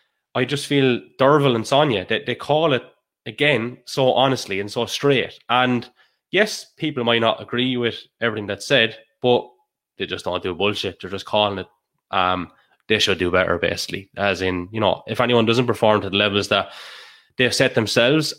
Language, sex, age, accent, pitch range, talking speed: English, male, 20-39, Irish, 110-145 Hz, 185 wpm